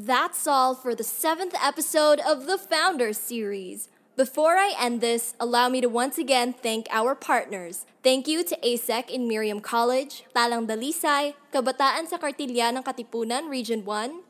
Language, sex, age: English, female, 10-29